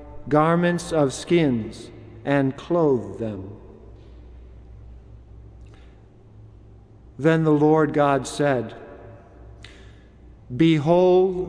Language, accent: English, American